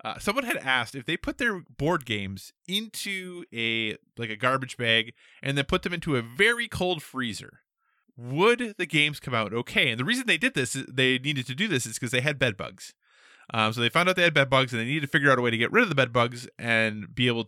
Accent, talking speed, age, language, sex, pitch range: American, 260 wpm, 20-39, English, male, 115-165 Hz